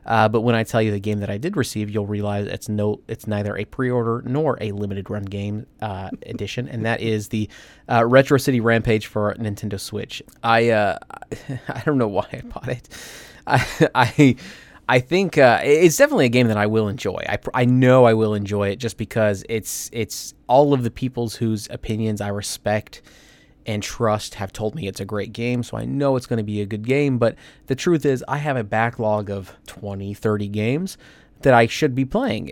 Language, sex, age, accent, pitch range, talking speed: English, male, 20-39, American, 105-120 Hz, 210 wpm